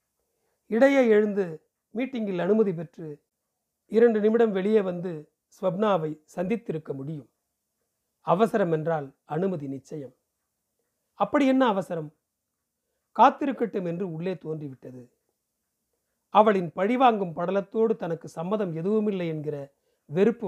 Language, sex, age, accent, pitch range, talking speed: Tamil, male, 40-59, native, 160-230 Hz, 90 wpm